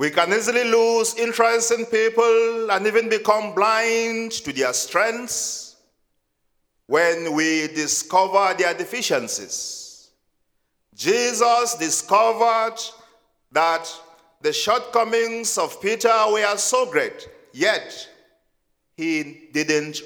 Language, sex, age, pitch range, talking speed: English, male, 50-69, 160-230 Hz, 95 wpm